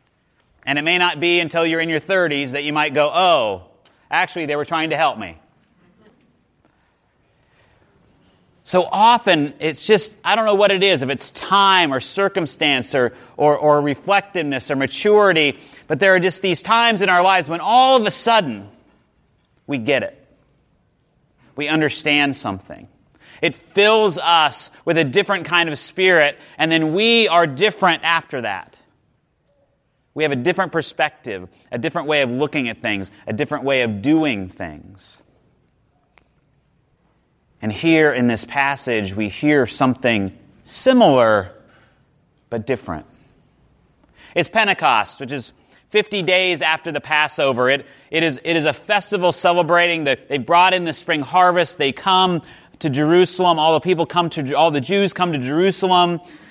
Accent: American